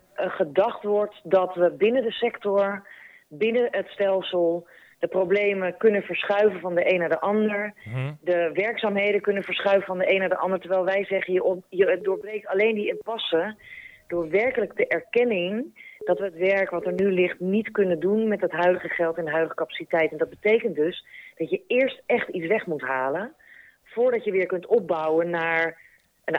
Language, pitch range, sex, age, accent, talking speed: Dutch, 170-205 Hz, female, 30-49, Dutch, 180 wpm